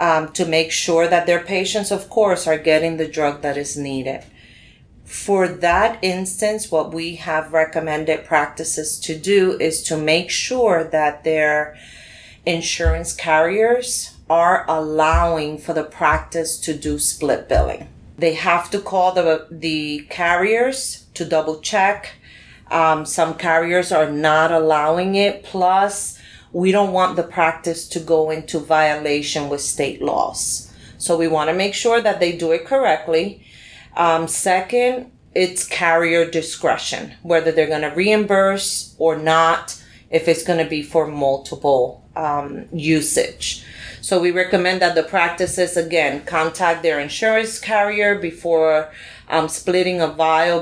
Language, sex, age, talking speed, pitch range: English, female, 40-59, 145 wpm, 155-185 Hz